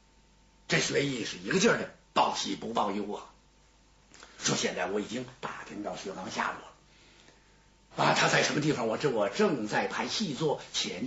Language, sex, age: Chinese, male, 60-79